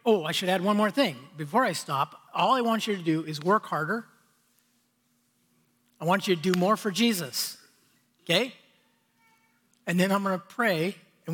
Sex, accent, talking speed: male, American, 185 wpm